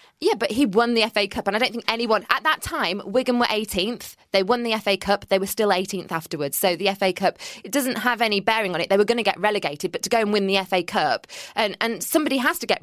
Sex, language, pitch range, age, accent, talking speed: female, English, 180-225 Hz, 20-39, British, 275 wpm